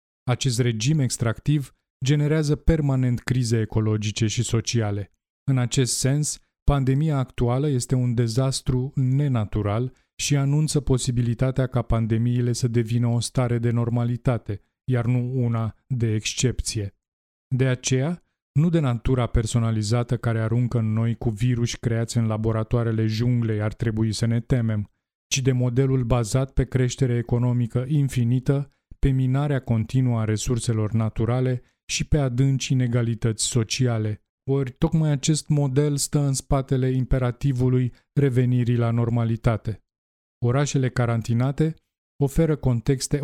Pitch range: 115-135 Hz